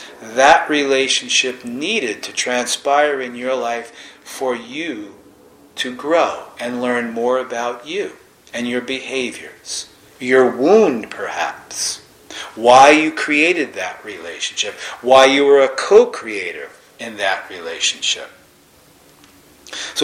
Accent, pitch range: American, 120-140 Hz